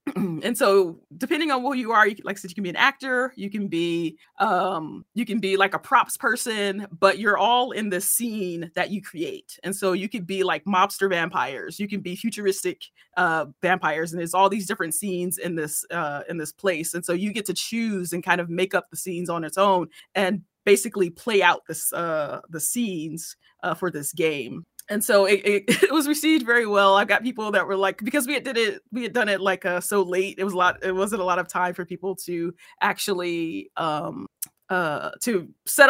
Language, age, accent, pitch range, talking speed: English, 20-39, American, 180-215 Hz, 230 wpm